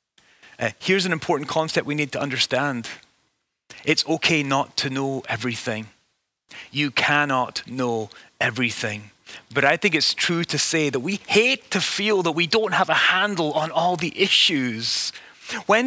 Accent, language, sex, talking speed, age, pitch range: British, English, male, 160 wpm, 30-49, 150-195 Hz